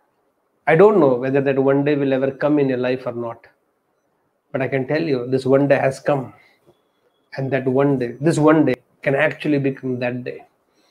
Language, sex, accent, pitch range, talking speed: English, male, Indian, 135-195 Hz, 205 wpm